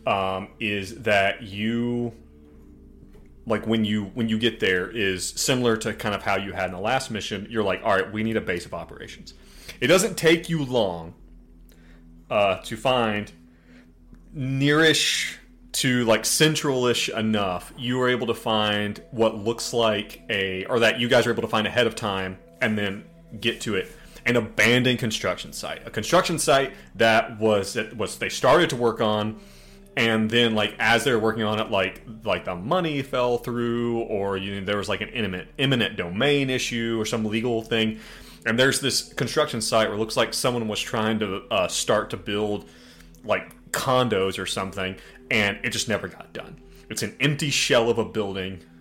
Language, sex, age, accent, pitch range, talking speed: English, male, 30-49, American, 95-120 Hz, 185 wpm